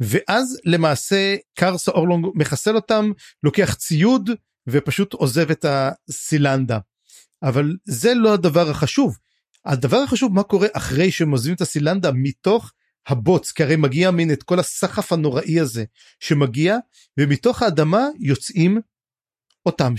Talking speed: 125 wpm